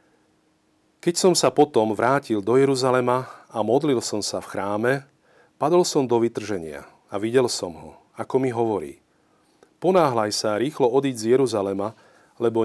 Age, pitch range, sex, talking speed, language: 40-59, 105-130 Hz, male, 145 wpm, Slovak